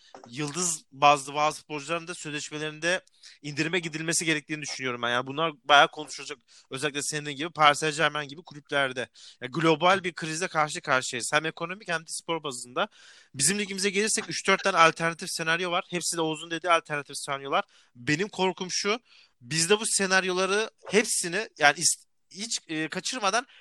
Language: Turkish